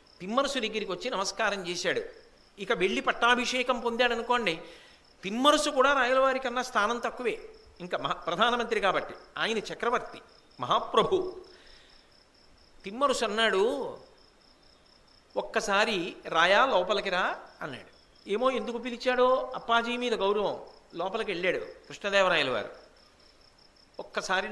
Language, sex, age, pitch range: Telugu, male, 50-69, 180-250 Hz